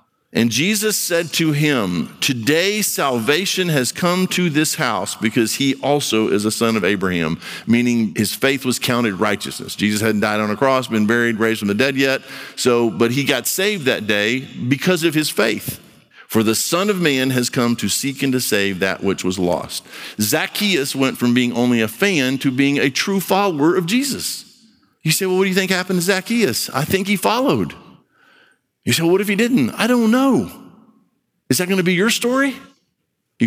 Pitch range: 120-190 Hz